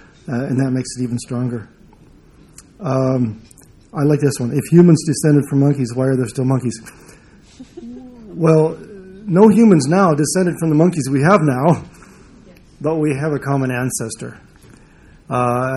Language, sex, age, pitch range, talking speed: English, male, 40-59, 130-160 Hz, 150 wpm